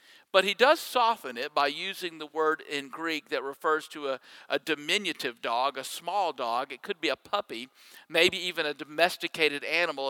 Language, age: English, 50-69